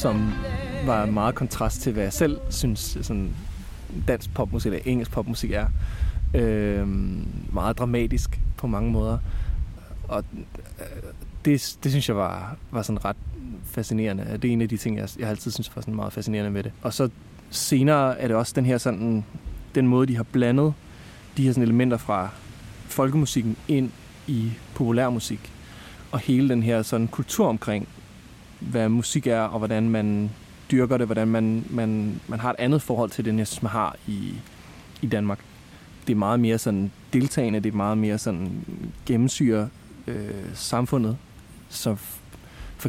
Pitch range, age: 105-125 Hz, 20-39